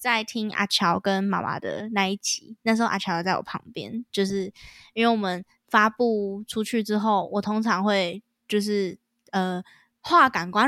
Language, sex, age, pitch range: Chinese, female, 10-29, 185-225 Hz